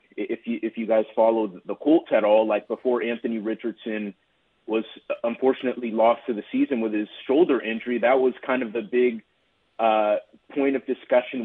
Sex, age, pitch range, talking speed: male, 30-49, 110-130 Hz, 180 wpm